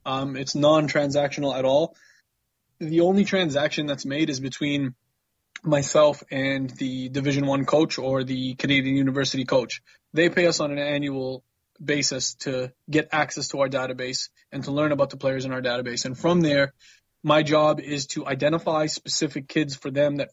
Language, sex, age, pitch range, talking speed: English, male, 20-39, 135-155 Hz, 170 wpm